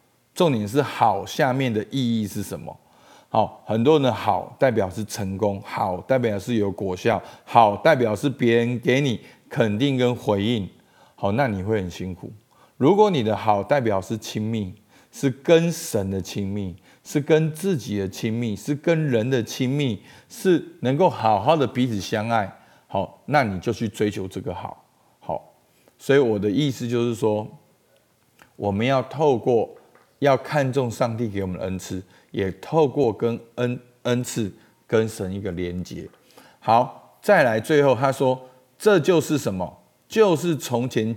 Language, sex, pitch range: Chinese, male, 100-135 Hz